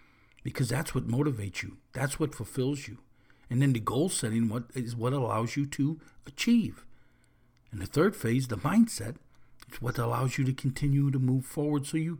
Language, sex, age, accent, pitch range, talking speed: English, male, 50-69, American, 120-170 Hz, 180 wpm